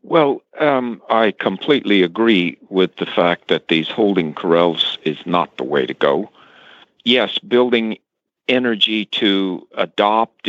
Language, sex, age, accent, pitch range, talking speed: English, male, 60-79, American, 105-135 Hz, 130 wpm